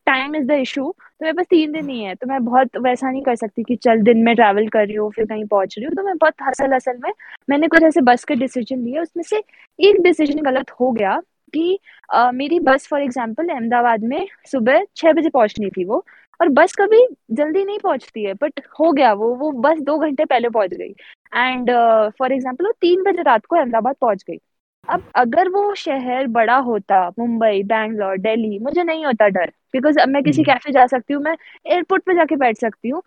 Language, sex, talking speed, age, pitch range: English, female, 125 wpm, 20-39, 235-315 Hz